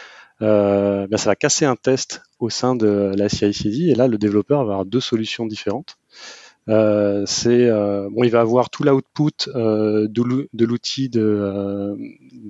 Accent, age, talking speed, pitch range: French, 30-49, 170 wpm, 105-125 Hz